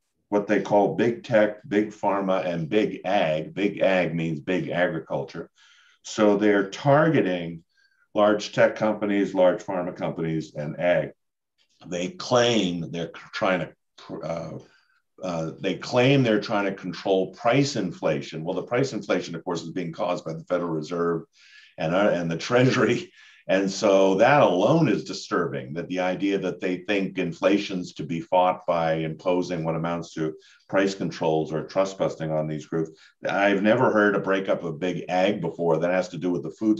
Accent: American